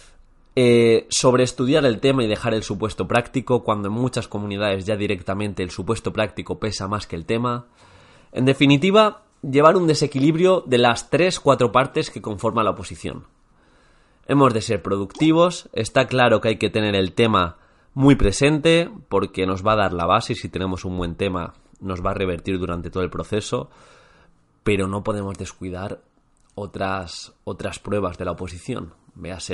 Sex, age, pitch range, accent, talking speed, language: male, 20-39, 95-125 Hz, Spanish, 175 wpm, Spanish